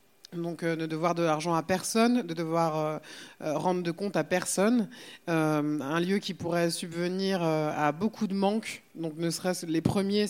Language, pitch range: French, 160-205 Hz